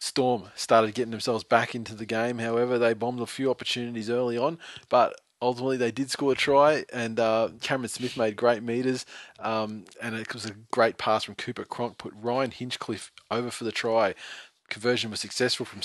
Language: English